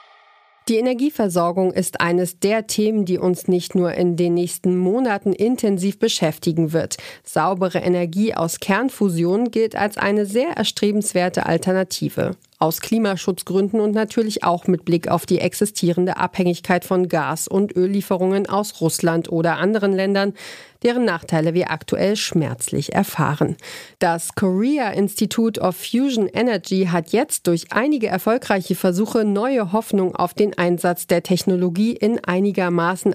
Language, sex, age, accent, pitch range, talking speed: German, female, 40-59, German, 175-215 Hz, 135 wpm